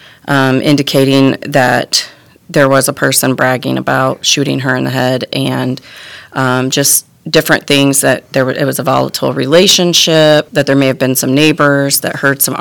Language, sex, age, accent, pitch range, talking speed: English, female, 30-49, American, 130-150 Hz, 175 wpm